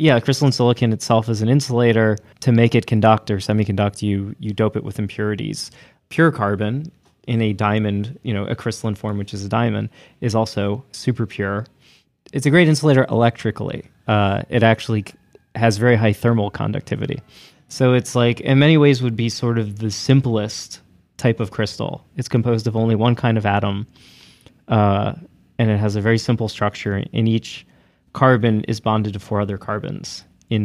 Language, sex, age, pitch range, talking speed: English, male, 20-39, 105-125 Hz, 180 wpm